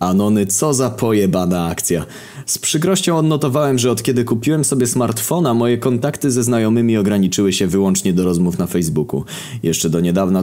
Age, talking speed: 20-39, 160 wpm